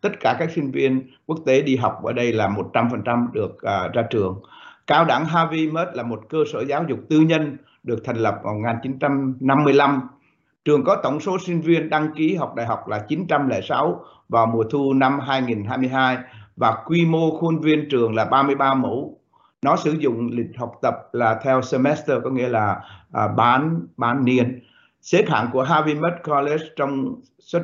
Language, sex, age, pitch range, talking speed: Vietnamese, male, 60-79, 120-155 Hz, 180 wpm